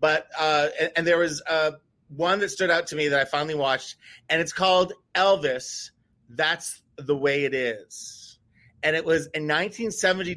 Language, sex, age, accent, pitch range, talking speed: English, male, 30-49, American, 145-185 Hz, 180 wpm